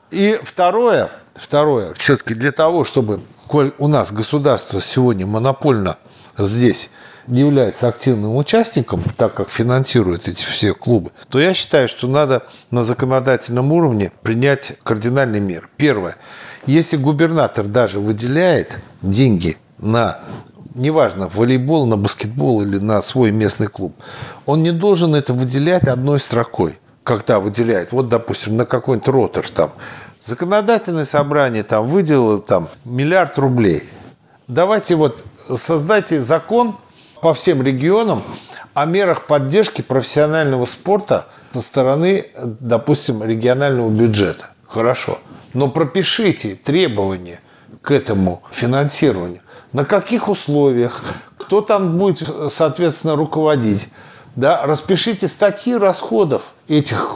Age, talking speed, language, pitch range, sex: 50-69, 115 wpm, Russian, 115-155 Hz, male